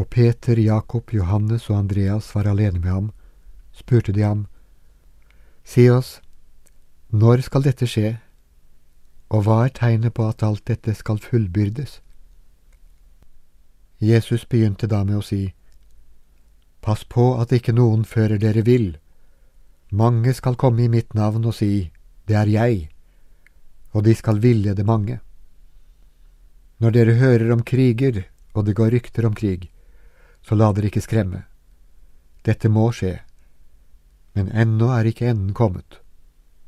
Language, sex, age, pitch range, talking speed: Danish, male, 60-79, 80-115 Hz, 135 wpm